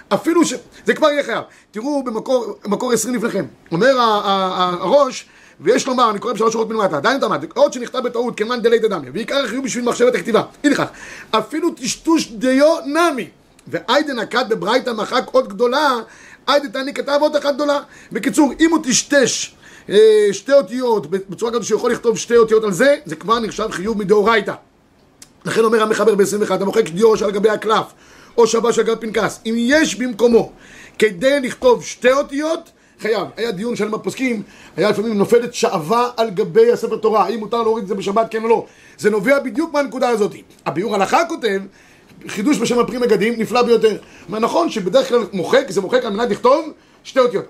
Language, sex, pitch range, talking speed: Hebrew, male, 215-270 Hz, 175 wpm